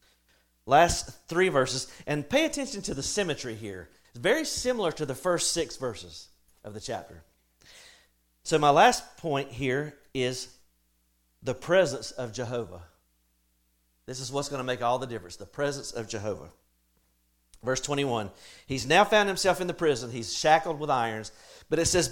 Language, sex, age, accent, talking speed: English, male, 40-59, American, 160 wpm